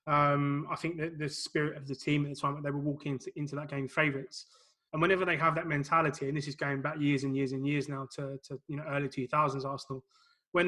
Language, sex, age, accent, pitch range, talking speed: English, male, 20-39, British, 140-155 Hz, 265 wpm